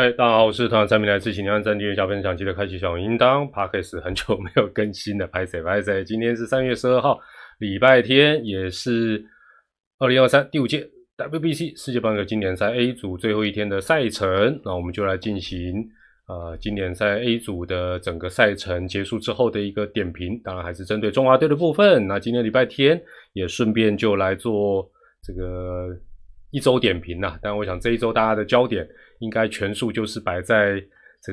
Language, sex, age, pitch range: Chinese, male, 20-39, 95-120 Hz